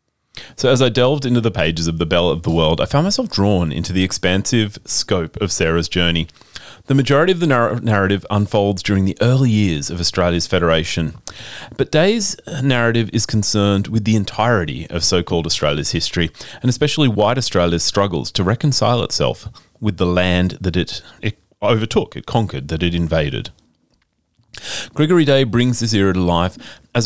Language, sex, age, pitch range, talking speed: English, male, 30-49, 85-120 Hz, 170 wpm